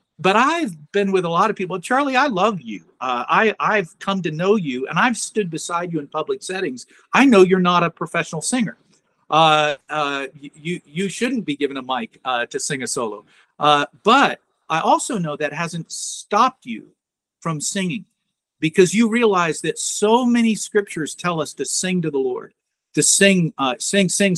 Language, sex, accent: English, male, American